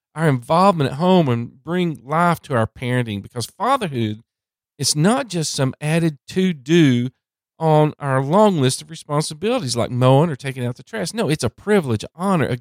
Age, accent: 40-59, American